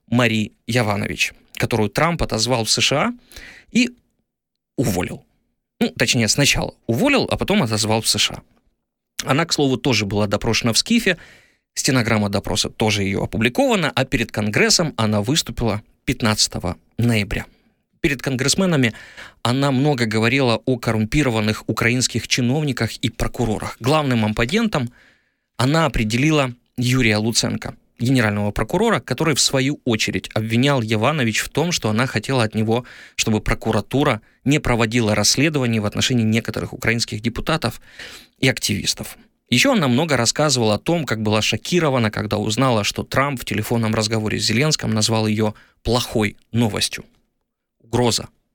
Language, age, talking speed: Ukrainian, 20-39, 130 wpm